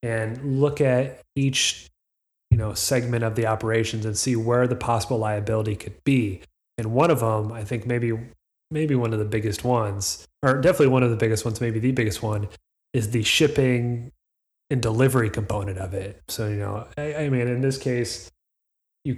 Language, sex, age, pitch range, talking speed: English, male, 30-49, 110-125 Hz, 190 wpm